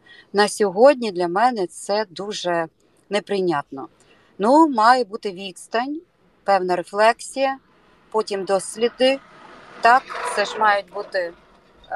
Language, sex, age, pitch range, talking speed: Ukrainian, female, 30-49, 170-240 Hz, 100 wpm